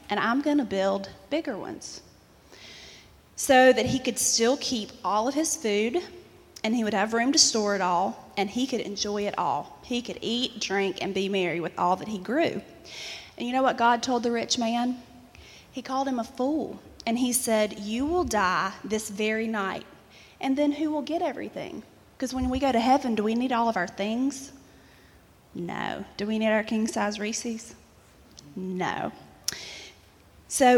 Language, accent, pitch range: English, American, 210-260 Hz